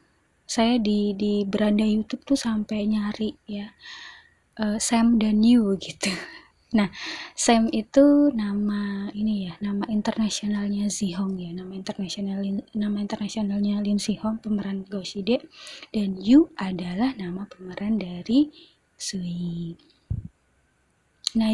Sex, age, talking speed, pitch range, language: female, 20-39, 115 wpm, 210-265 Hz, Indonesian